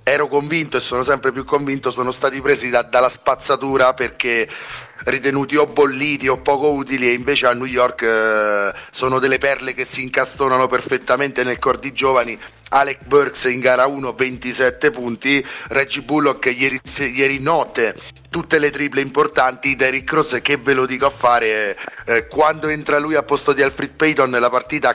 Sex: male